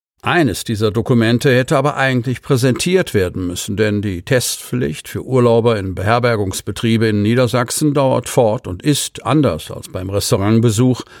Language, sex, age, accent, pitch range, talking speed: German, male, 50-69, German, 110-135 Hz, 140 wpm